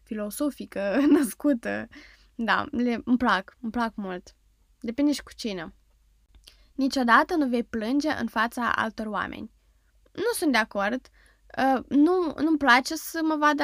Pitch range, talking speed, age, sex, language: 220-285 Hz, 135 wpm, 10-29, female, Romanian